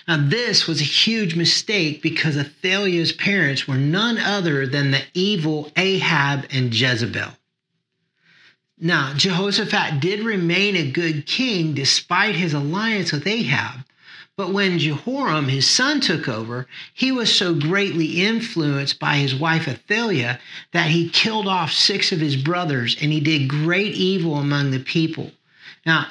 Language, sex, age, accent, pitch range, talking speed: English, male, 40-59, American, 145-195 Hz, 145 wpm